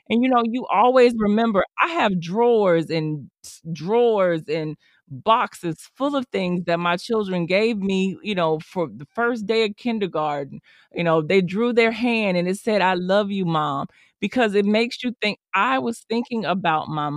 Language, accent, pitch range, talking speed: English, American, 170-235 Hz, 180 wpm